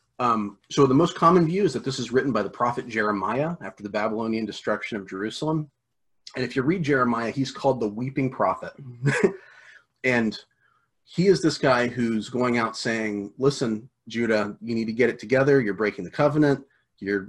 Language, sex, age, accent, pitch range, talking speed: English, male, 30-49, American, 105-135 Hz, 185 wpm